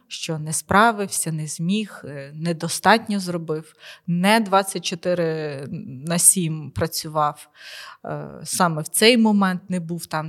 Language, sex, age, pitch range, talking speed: Ukrainian, female, 20-39, 160-200 Hz, 110 wpm